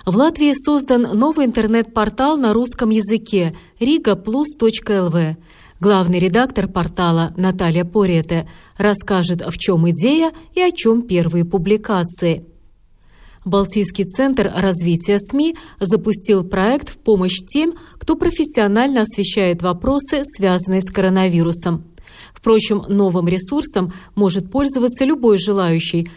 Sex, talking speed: female, 105 wpm